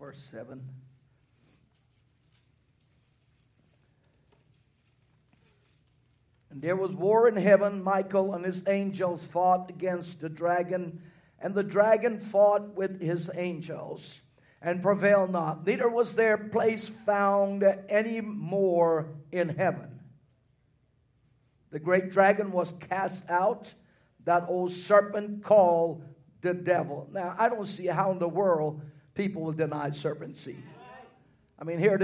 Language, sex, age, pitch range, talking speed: English, male, 50-69, 155-200 Hz, 120 wpm